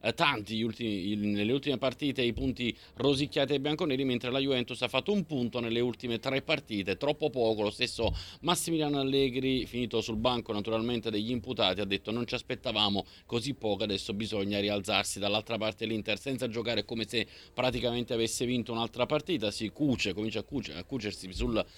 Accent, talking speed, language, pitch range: native, 175 wpm, Italian, 105-130 Hz